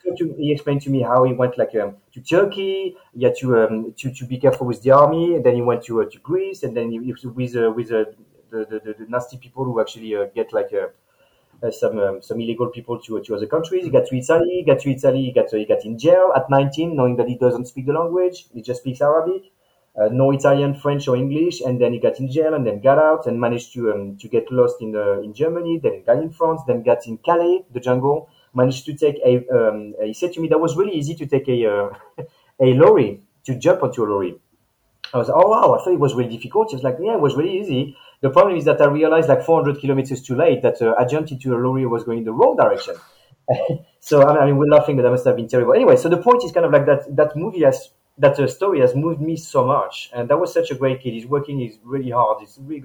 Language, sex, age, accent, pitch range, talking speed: English, male, 30-49, French, 125-170 Hz, 275 wpm